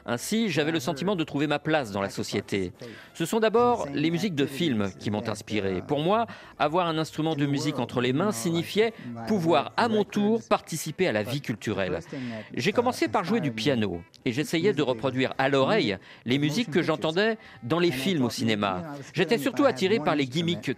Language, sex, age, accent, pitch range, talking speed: French, male, 40-59, French, 125-185 Hz, 195 wpm